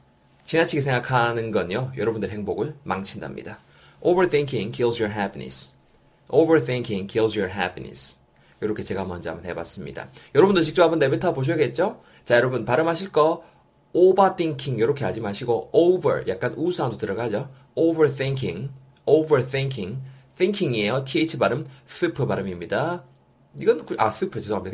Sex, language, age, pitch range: male, Korean, 30-49, 115-155 Hz